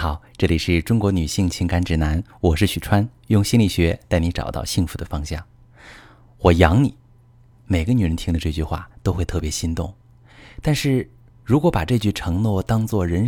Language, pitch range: Chinese, 85-120 Hz